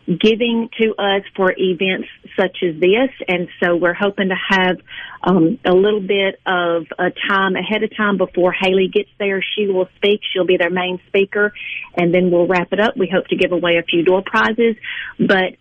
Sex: female